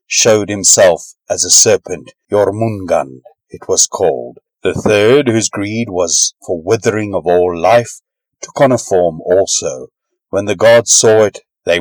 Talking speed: 150 wpm